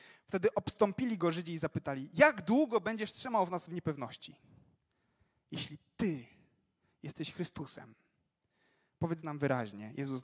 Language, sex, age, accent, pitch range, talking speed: Polish, male, 30-49, native, 130-170 Hz, 130 wpm